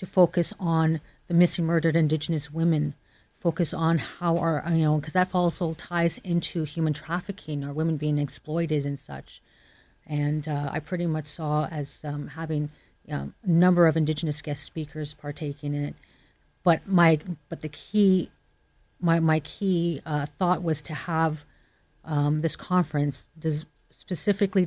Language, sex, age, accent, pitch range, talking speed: English, female, 40-59, American, 150-180 Hz, 140 wpm